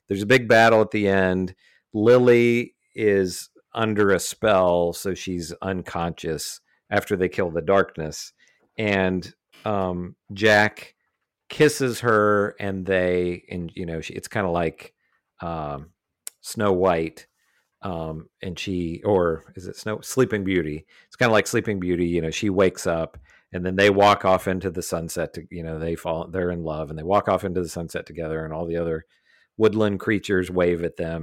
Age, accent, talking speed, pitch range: 40-59, American, 175 wpm, 90-115 Hz